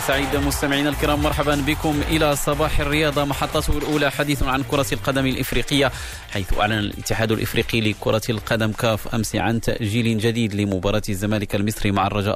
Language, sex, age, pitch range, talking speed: Arabic, male, 30-49, 100-115 Hz, 150 wpm